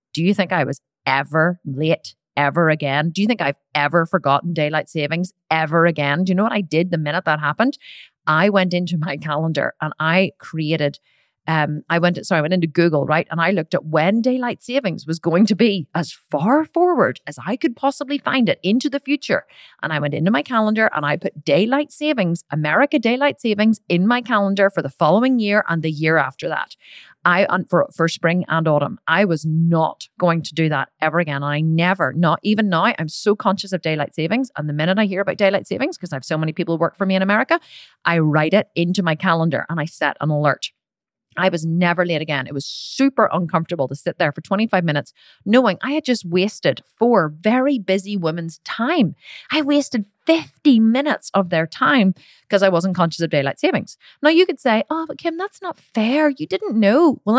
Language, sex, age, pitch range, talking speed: English, female, 30-49, 160-225 Hz, 215 wpm